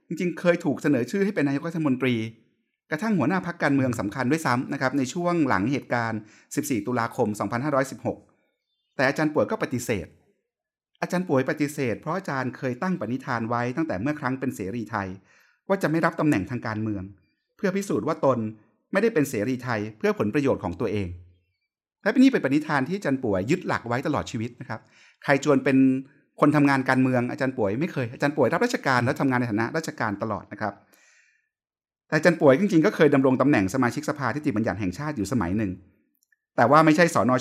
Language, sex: Thai, male